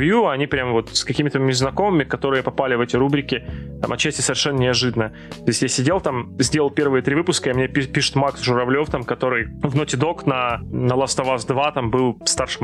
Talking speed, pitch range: 205 wpm, 120-145 Hz